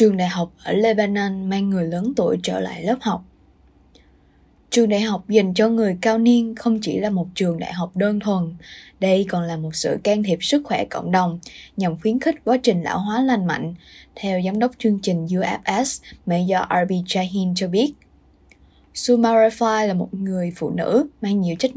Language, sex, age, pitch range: Vietnamese, female, 20-39, 180-220 Hz